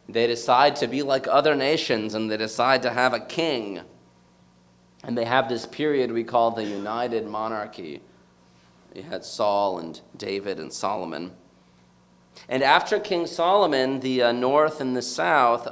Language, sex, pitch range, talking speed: English, male, 90-115 Hz, 155 wpm